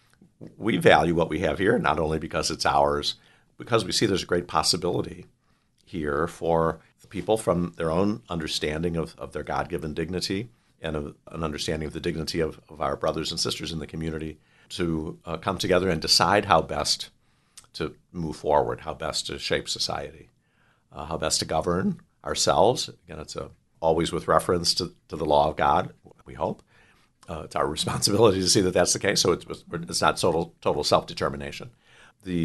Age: 50-69